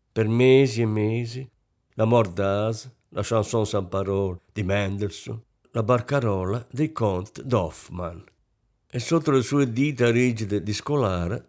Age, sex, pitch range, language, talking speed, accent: 50-69, male, 105-145 Hz, Italian, 130 wpm, native